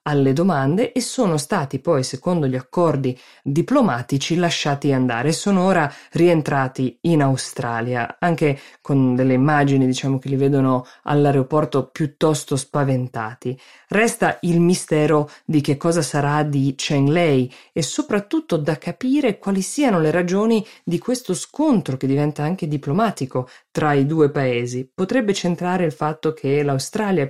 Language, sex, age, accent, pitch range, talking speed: Italian, female, 20-39, native, 135-180 Hz, 140 wpm